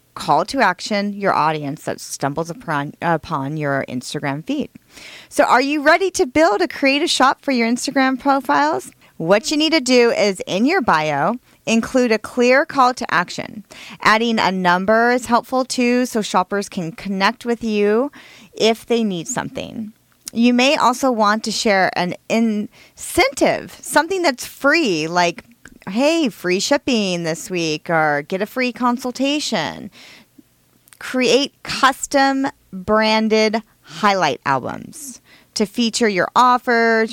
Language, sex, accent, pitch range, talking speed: English, female, American, 175-255 Hz, 140 wpm